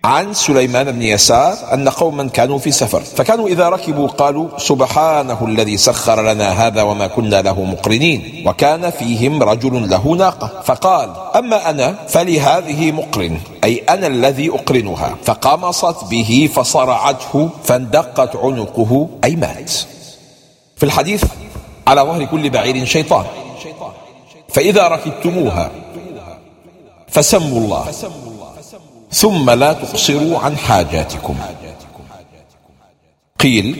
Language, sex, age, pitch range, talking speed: English, male, 50-69, 115-155 Hz, 105 wpm